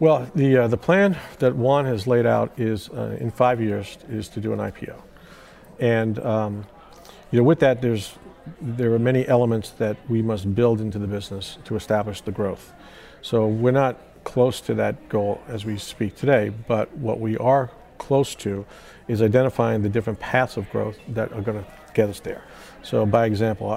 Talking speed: 195 wpm